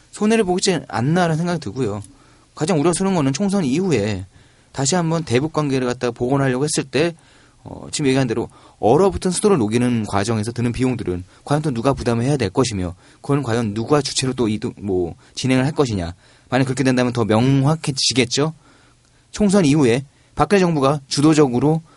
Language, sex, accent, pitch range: Korean, male, native, 115-155 Hz